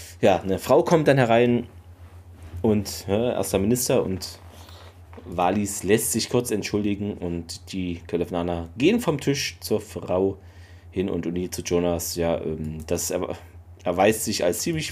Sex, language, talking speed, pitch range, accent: male, German, 150 wpm, 85-110 Hz, German